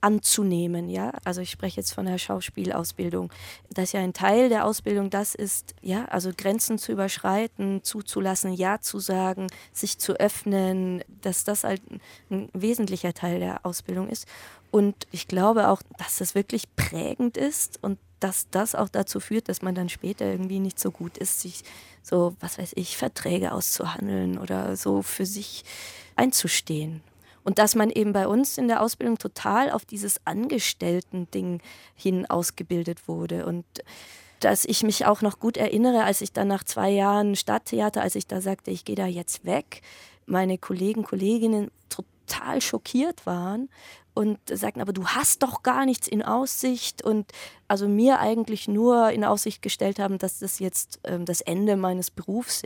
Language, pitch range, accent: German, 180-215 Hz, German